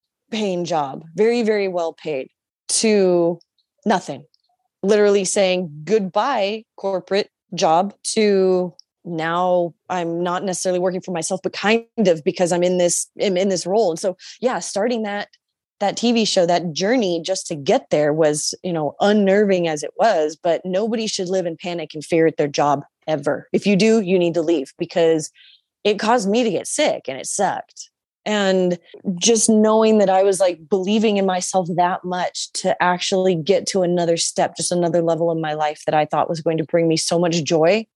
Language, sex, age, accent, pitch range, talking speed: English, female, 20-39, American, 170-210 Hz, 185 wpm